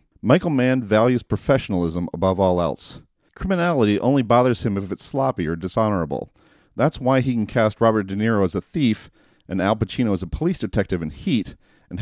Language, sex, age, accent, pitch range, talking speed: English, male, 40-59, American, 95-130 Hz, 185 wpm